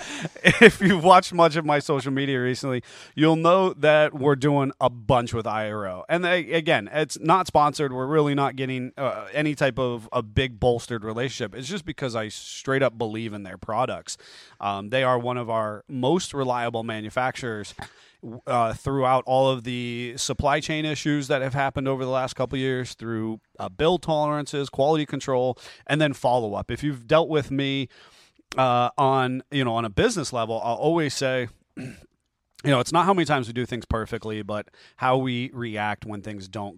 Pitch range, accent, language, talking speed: 110-145 Hz, American, English, 190 wpm